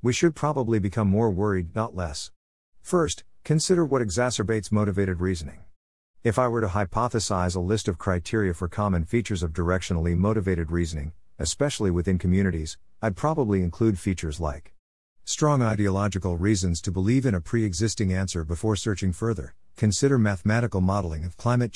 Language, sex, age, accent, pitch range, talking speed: English, male, 50-69, American, 85-115 Hz, 150 wpm